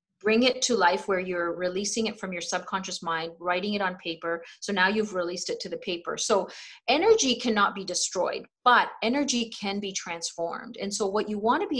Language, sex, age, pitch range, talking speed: English, female, 30-49, 180-235 Hz, 210 wpm